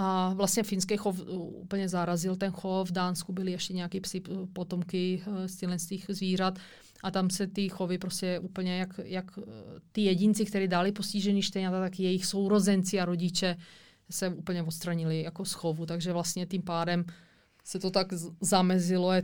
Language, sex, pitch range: Czech, female, 170-190 Hz